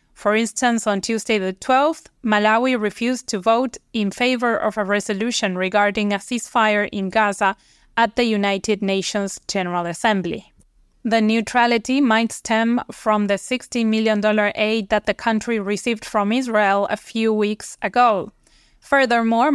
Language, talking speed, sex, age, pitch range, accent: English, 140 wpm, female, 20-39, 205-235 Hz, Spanish